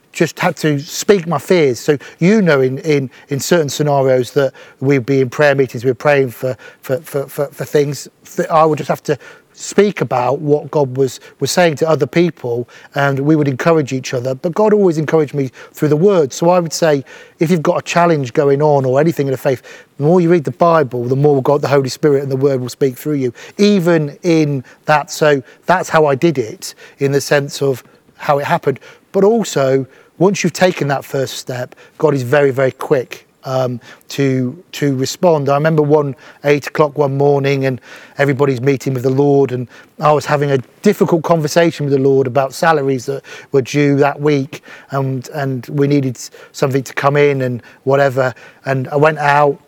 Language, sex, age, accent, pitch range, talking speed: English, male, 40-59, British, 135-155 Hz, 205 wpm